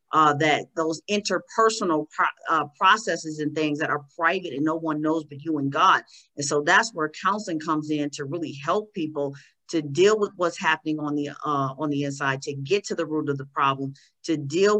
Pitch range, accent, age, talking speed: 150-180 Hz, American, 40-59, 210 wpm